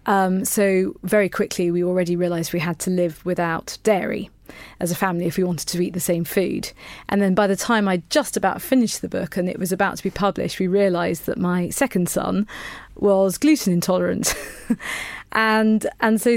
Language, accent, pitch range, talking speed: English, British, 175-205 Hz, 200 wpm